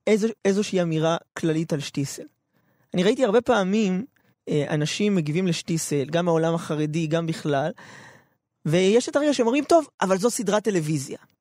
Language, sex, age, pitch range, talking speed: Hebrew, male, 20-39, 170-235 Hz, 140 wpm